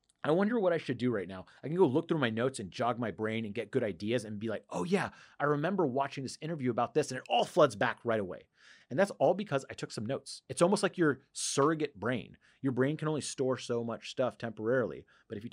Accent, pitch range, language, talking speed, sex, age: American, 115-145 Hz, English, 265 wpm, male, 30-49